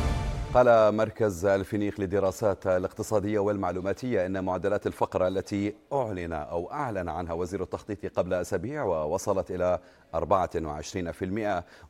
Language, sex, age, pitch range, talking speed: Arabic, male, 30-49, 95-115 Hz, 105 wpm